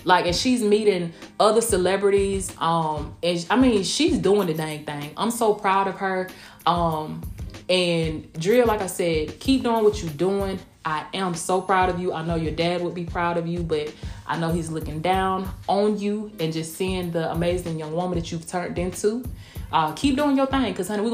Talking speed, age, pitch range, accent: 200 wpm, 20-39, 170-225 Hz, American